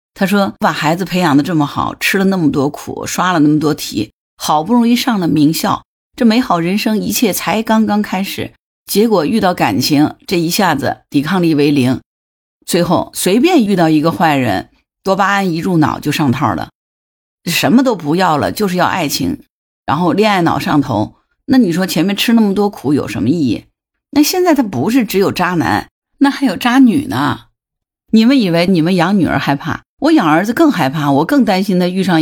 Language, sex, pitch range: Chinese, female, 150-210 Hz